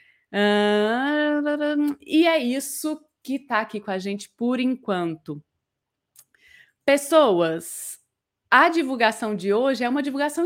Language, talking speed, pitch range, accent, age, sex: Portuguese, 115 wpm, 195-260 Hz, Brazilian, 20-39, female